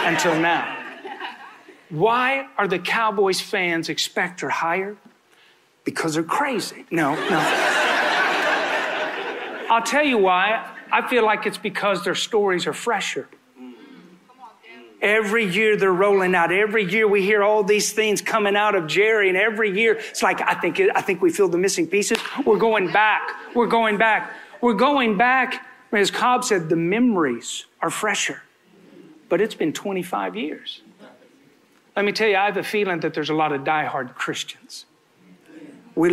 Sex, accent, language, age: male, American, English, 40-59